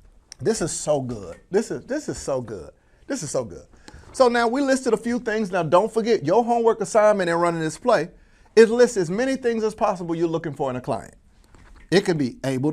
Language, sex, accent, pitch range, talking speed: English, male, American, 130-210 Hz, 220 wpm